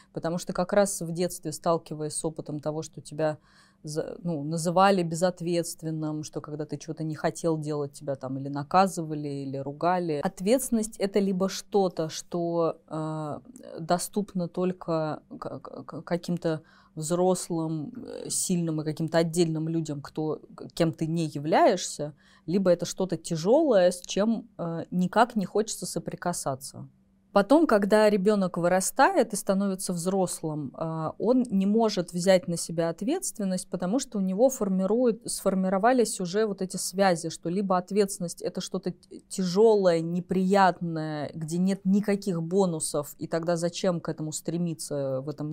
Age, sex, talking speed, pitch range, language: 20-39, female, 130 wpm, 155-195 Hz, Russian